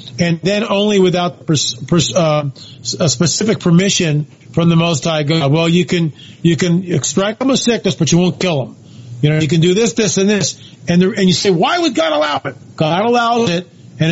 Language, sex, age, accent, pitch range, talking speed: English, male, 40-59, American, 150-190 Hz, 220 wpm